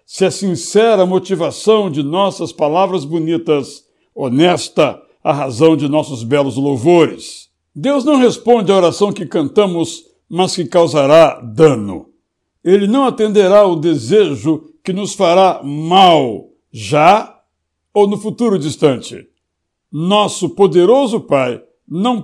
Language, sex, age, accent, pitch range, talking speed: Portuguese, male, 60-79, Brazilian, 160-215 Hz, 120 wpm